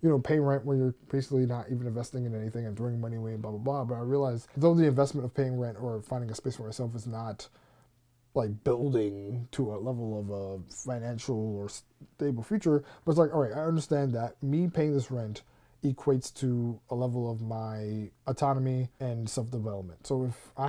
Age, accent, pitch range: 20-39, American, 110-135 Hz